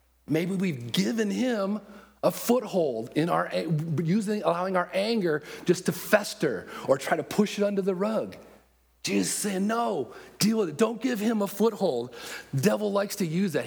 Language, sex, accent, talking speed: English, male, American, 175 wpm